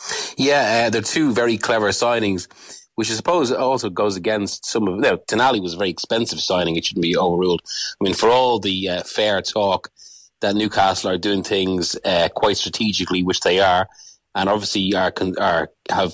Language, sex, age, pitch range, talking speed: English, male, 30-49, 95-110 Hz, 195 wpm